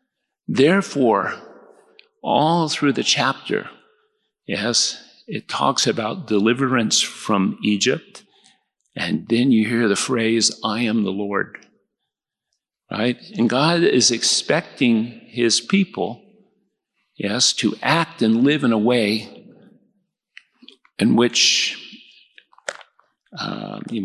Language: English